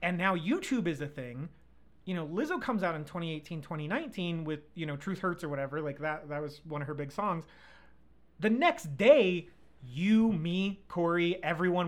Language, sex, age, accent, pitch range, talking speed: English, male, 30-49, American, 160-220 Hz, 185 wpm